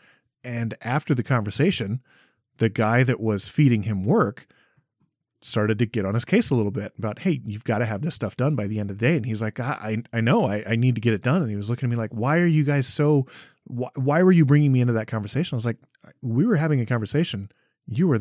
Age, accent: 30-49, American